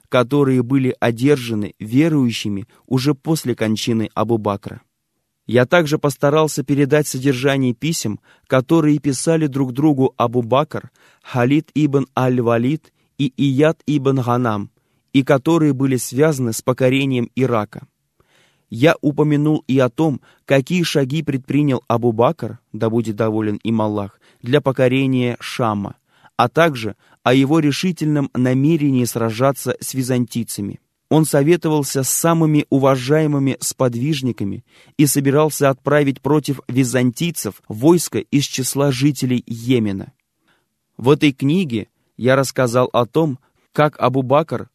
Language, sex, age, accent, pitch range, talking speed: Russian, male, 20-39, native, 120-145 Hz, 115 wpm